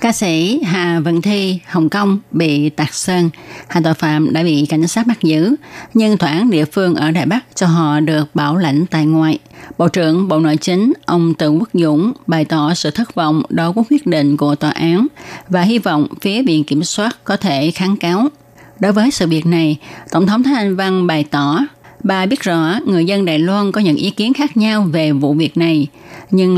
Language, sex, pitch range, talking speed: German, female, 155-200 Hz, 215 wpm